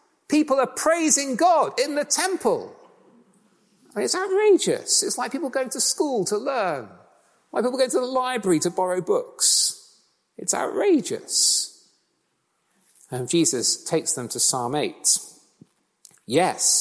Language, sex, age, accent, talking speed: English, male, 40-59, British, 130 wpm